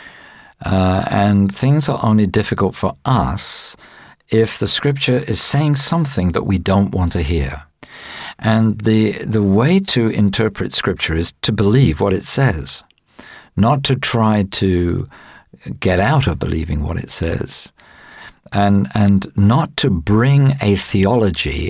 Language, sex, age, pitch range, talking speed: English, male, 50-69, 95-115 Hz, 140 wpm